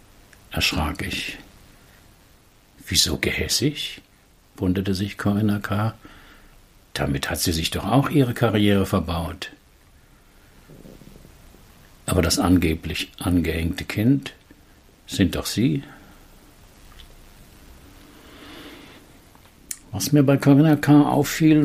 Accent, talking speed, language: German, 85 wpm, German